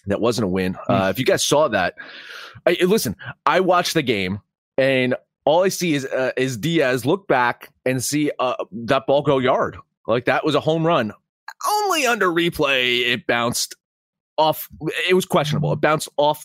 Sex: male